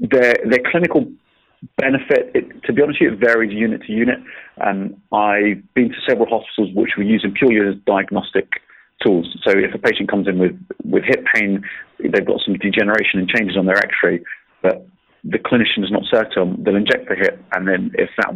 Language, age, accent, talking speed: English, 30-49, British, 205 wpm